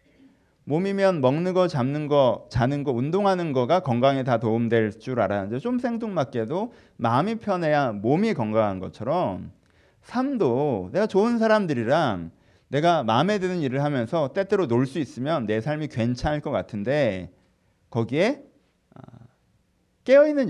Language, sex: Korean, male